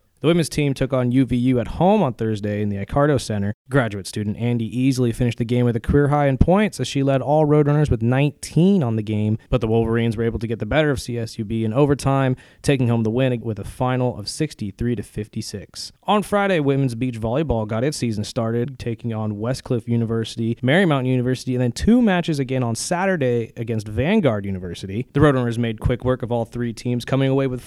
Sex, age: male, 20-39